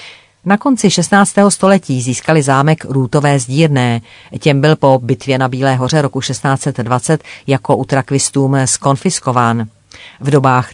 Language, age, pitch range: Czech, 40-59, 130-155 Hz